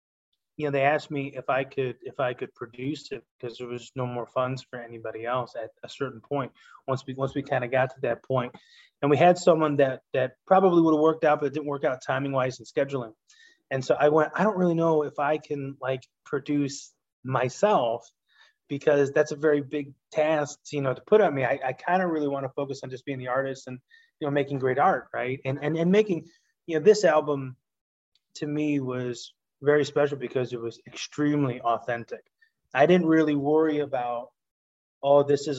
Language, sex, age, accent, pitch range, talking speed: English, male, 30-49, American, 130-155 Hz, 215 wpm